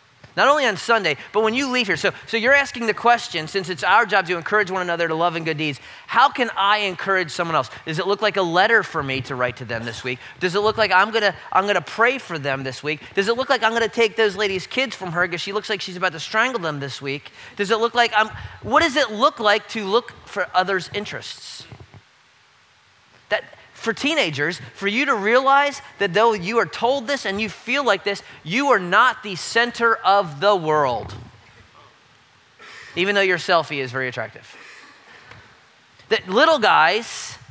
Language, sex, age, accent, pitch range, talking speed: English, male, 30-49, American, 175-235 Hz, 220 wpm